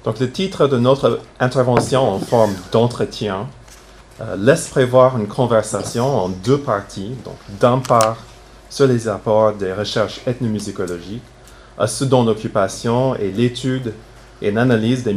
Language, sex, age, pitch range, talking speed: French, male, 30-49, 100-125 Hz, 140 wpm